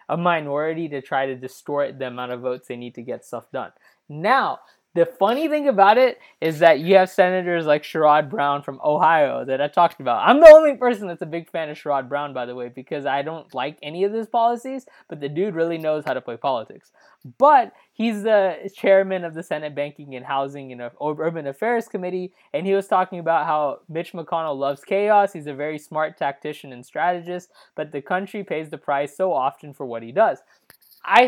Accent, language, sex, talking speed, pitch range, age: American, English, male, 215 wpm, 145-205 Hz, 20-39